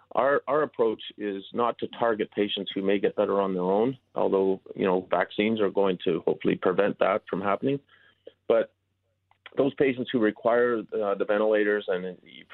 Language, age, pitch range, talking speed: English, 40-59, 95-115 Hz, 175 wpm